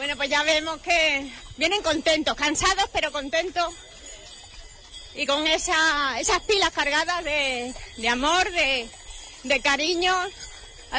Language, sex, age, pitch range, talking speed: Spanish, female, 30-49, 275-325 Hz, 120 wpm